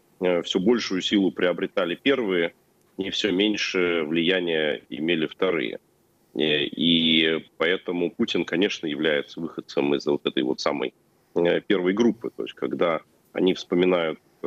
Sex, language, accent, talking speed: male, Russian, native, 120 wpm